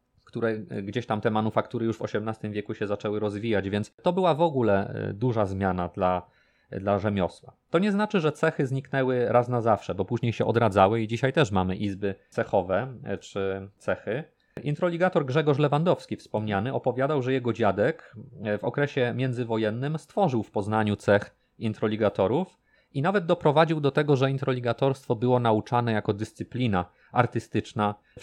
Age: 30-49